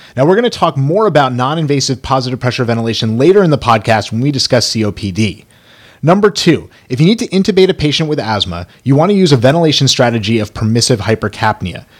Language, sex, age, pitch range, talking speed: English, male, 30-49, 115-160 Hz, 190 wpm